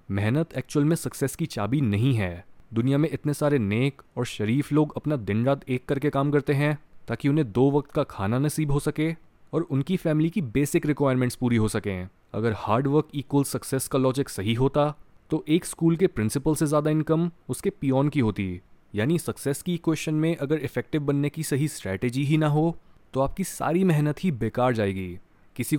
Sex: male